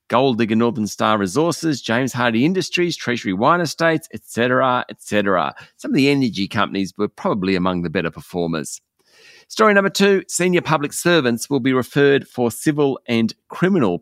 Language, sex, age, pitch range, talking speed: English, male, 40-59, 105-140 Hz, 160 wpm